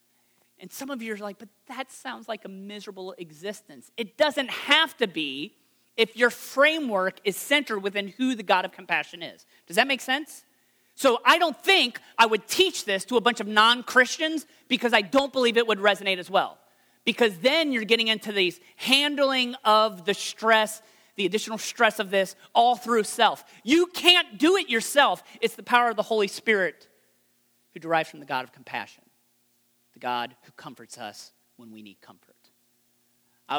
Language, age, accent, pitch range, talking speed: English, 40-59, American, 150-240 Hz, 180 wpm